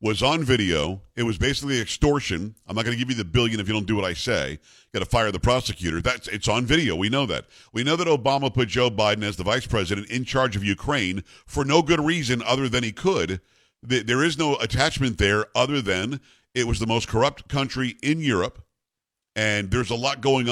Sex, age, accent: male, 50-69, American